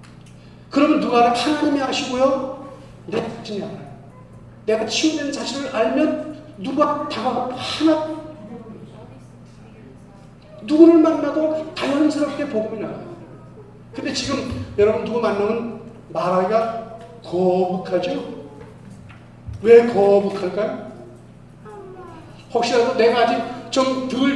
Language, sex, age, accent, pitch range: Korean, male, 40-59, native, 170-265 Hz